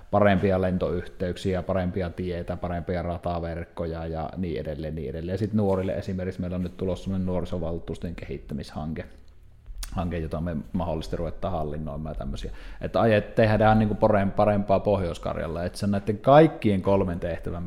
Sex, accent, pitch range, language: male, native, 85-100 Hz, Finnish